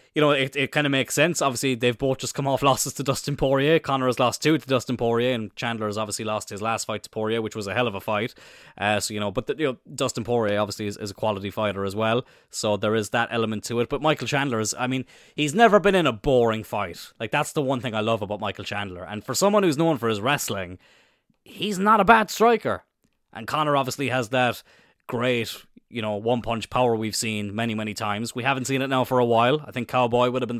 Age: 20-39